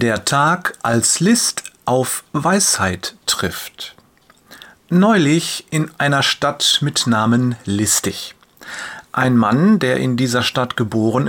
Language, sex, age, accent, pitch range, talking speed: German, male, 40-59, German, 125-175 Hz, 110 wpm